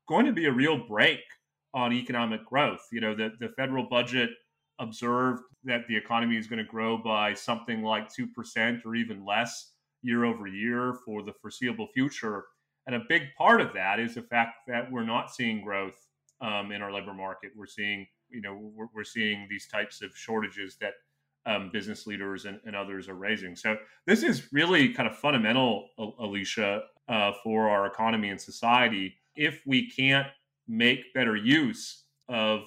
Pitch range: 105-125 Hz